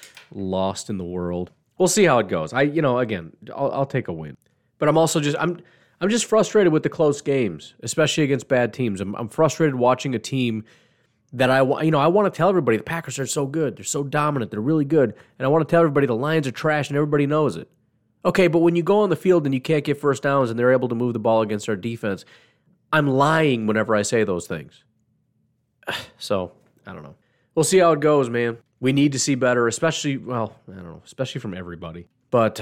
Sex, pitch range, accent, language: male, 110-150 Hz, American, English